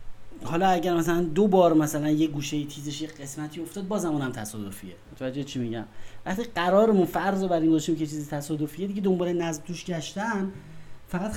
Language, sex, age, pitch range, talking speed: Persian, male, 30-49, 130-185 Hz, 170 wpm